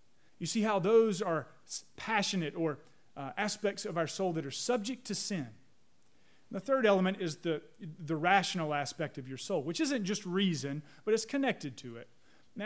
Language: English